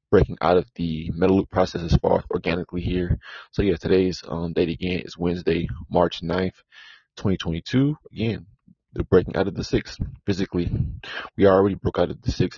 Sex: male